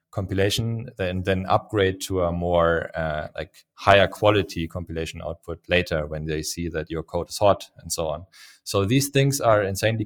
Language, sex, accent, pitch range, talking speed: English, male, German, 90-110 Hz, 180 wpm